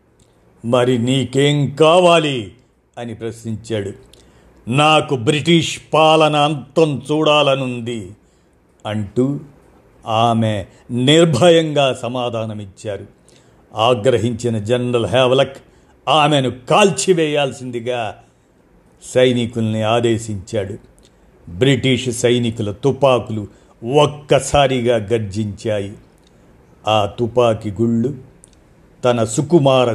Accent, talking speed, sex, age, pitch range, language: native, 60 wpm, male, 50-69, 115-145 Hz, Telugu